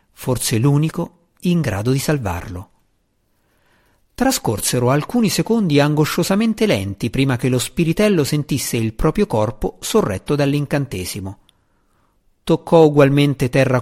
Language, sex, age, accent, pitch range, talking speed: Italian, male, 50-69, native, 110-155 Hz, 105 wpm